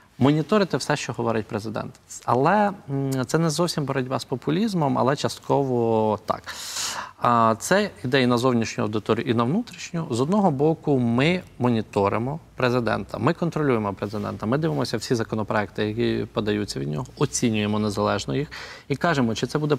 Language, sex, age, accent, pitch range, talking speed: Ukrainian, male, 20-39, native, 110-140 Hz, 150 wpm